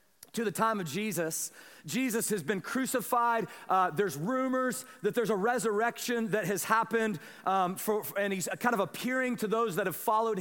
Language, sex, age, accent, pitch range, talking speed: English, male, 40-59, American, 220-265 Hz, 165 wpm